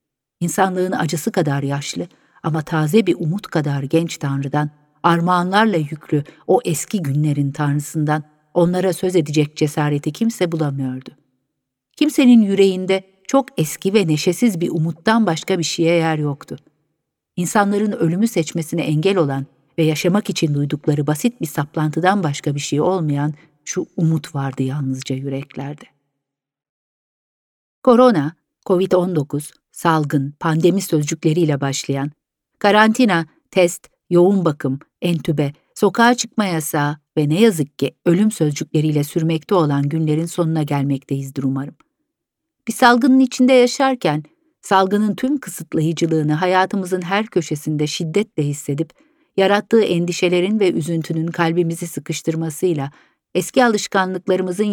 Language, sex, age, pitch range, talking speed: Turkish, female, 50-69, 150-190 Hz, 115 wpm